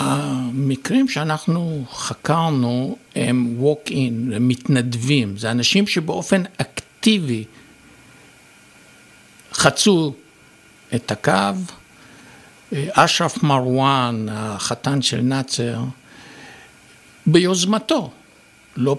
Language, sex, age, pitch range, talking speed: Hebrew, male, 60-79, 125-160 Hz, 70 wpm